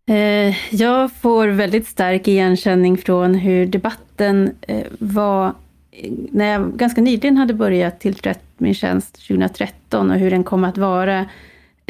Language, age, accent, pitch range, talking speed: Swedish, 30-49, native, 180-210 Hz, 125 wpm